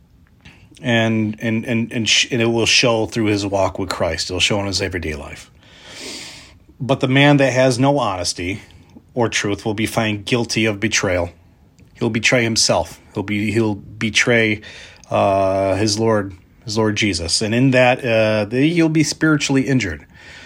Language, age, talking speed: English, 30-49, 165 wpm